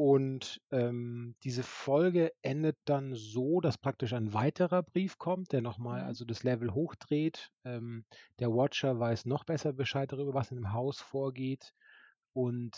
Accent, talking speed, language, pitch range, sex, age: German, 155 wpm, German, 115-145 Hz, male, 30-49